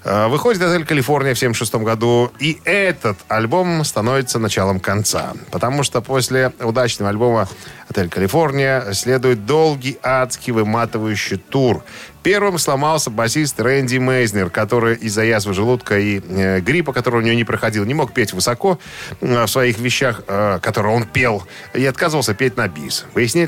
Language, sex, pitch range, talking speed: Russian, male, 110-140 Hz, 145 wpm